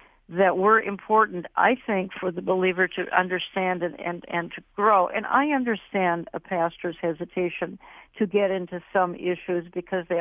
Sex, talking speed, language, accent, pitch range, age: female, 170 wpm, English, American, 180-200 Hz, 60-79